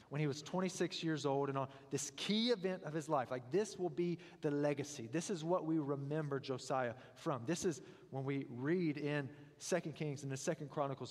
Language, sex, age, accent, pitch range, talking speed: English, male, 30-49, American, 125-160 Hz, 210 wpm